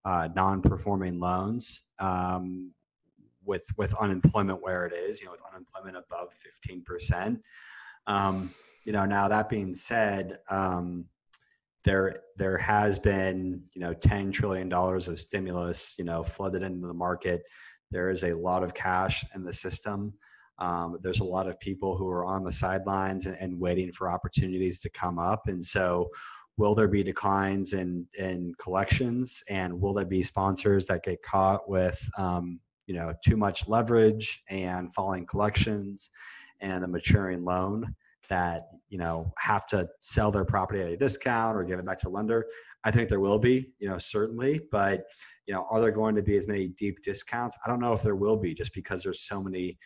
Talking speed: 180 wpm